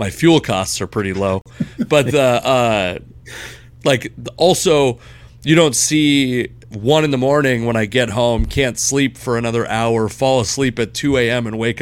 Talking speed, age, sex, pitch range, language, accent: 175 wpm, 30-49, male, 115-135 Hz, English, American